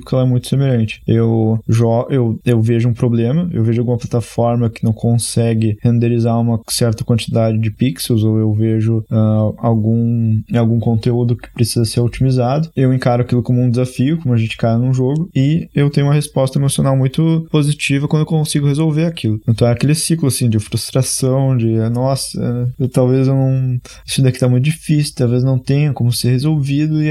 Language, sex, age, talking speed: Portuguese, male, 20-39, 190 wpm